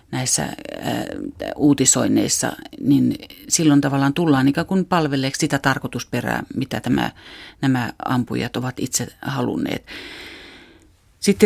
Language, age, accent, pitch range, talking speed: Finnish, 40-59, native, 135-160 Hz, 100 wpm